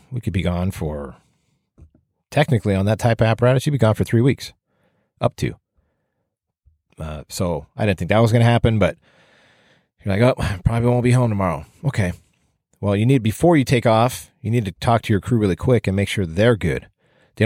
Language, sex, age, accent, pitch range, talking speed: English, male, 40-59, American, 95-120 Hz, 210 wpm